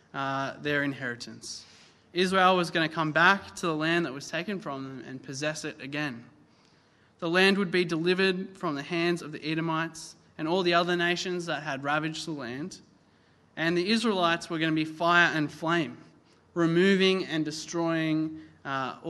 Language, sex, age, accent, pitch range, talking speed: English, male, 20-39, Australian, 155-185 Hz, 175 wpm